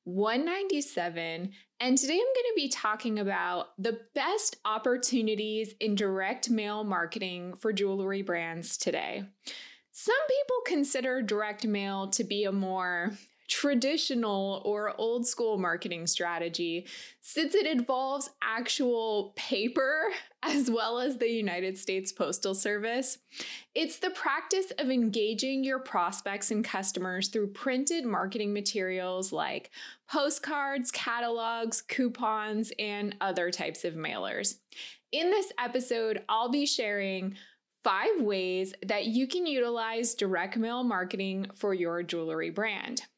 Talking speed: 125 wpm